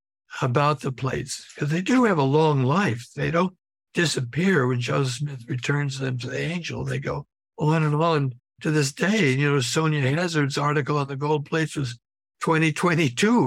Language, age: English, 60-79